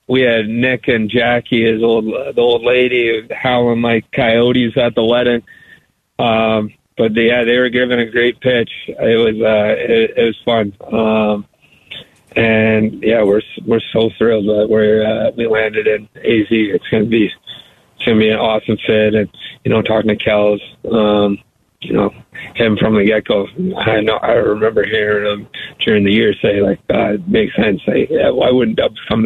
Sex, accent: male, American